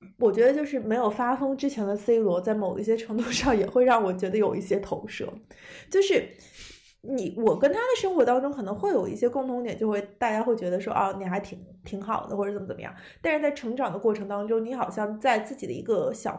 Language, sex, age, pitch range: Chinese, female, 20-39, 205-260 Hz